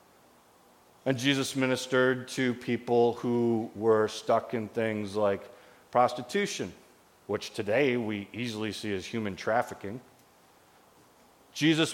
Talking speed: 105 wpm